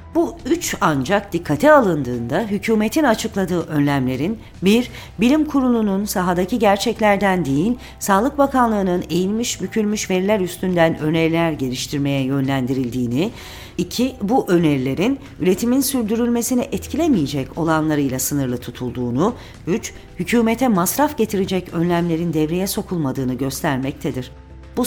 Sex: female